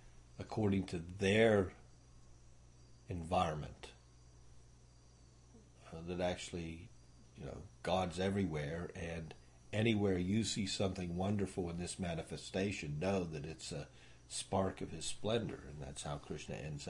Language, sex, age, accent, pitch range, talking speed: English, male, 50-69, American, 75-115 Hz, 115 wpm